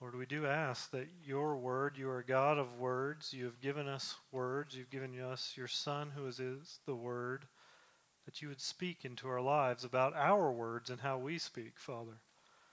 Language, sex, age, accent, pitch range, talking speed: English, male, 40-59, American, 125-150 Hz, 200 wpm